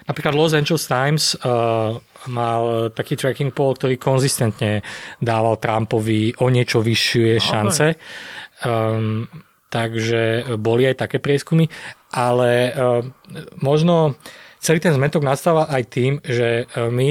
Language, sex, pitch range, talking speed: Slovak, male, 115-140 Hz, 120 wpm